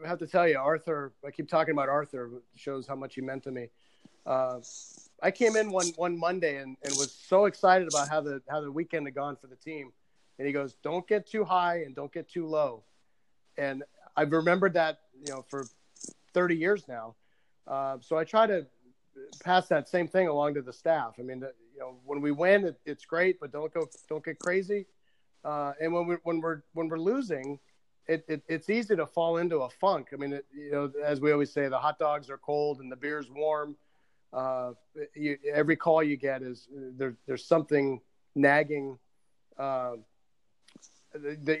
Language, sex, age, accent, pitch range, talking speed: English, male, 40-59, American, 135-165 Hz, 210 wpm